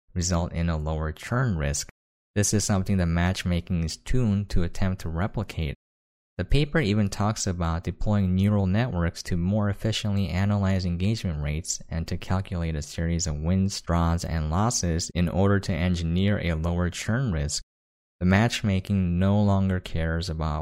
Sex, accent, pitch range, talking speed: male, American, 85-105 Hz, 160 wpm